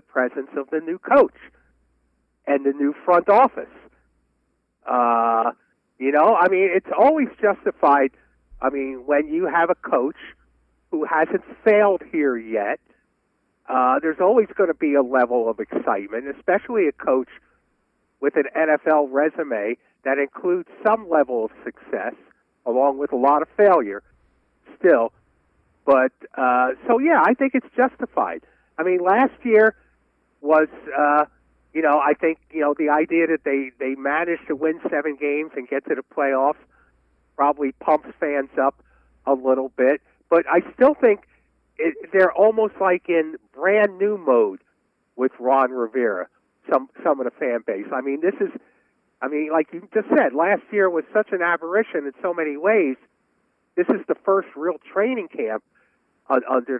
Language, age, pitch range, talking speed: English, 50-69, 130-195 Hz, 160 wpm